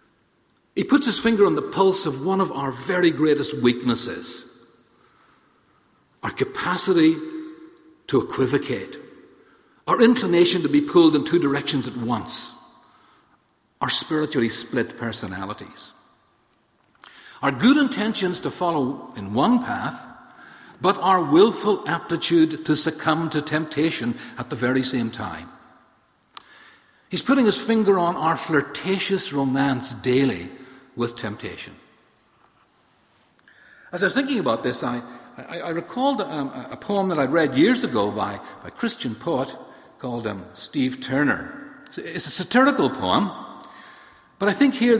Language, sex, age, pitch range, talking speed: English, male, 50-69, 130-205 Hz, 135 wpm